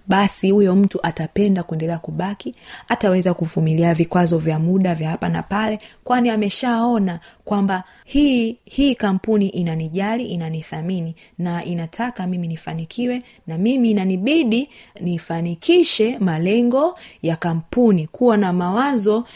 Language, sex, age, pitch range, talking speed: Swahili, female, 30-49, 165-225 Hz, 115 wpm